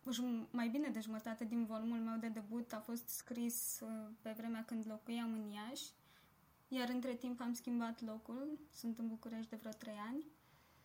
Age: 20-39